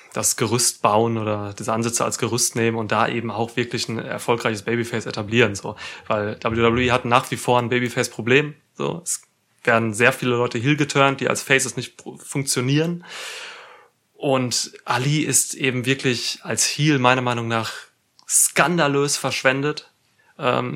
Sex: male